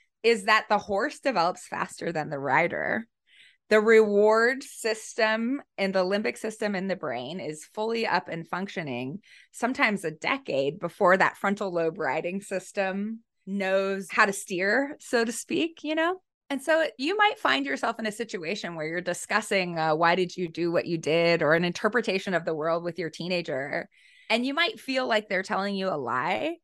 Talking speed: 180 wpm